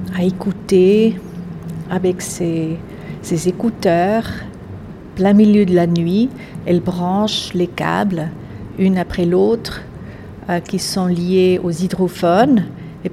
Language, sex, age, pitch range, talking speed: French, female, 50-69, 175-200 Hz, 115 wpm